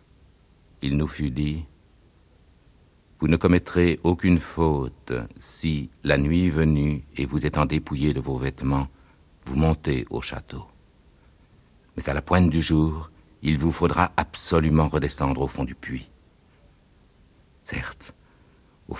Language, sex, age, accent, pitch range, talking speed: French, male, 60-79, French, 75-85 Hz, 130 wpm